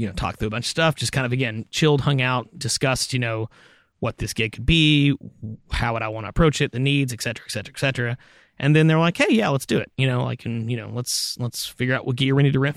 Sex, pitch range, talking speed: male, 115-135 Hz, 295 wpm